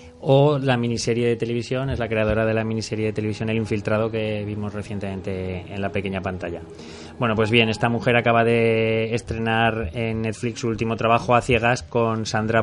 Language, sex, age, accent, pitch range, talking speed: Spanish, male, 20-39, Spanish, 105-120 Hz, 185 wpm